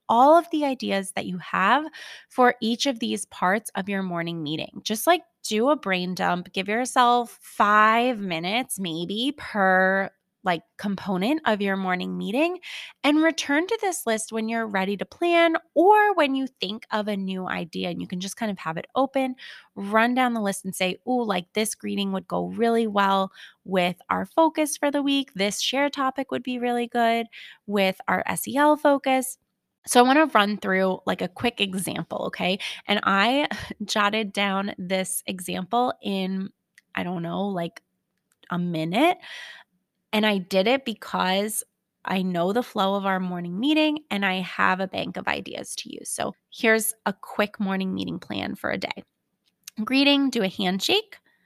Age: 20-39